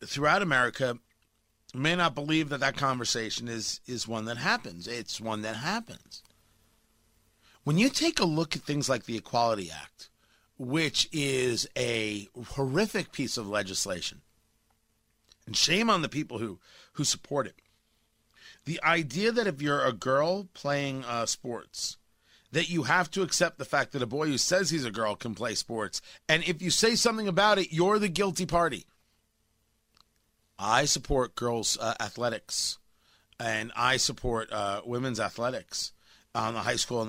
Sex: male